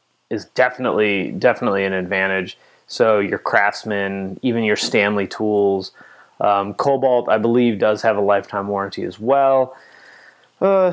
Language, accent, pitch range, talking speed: English, American, 100-140 Hz, 130 wpm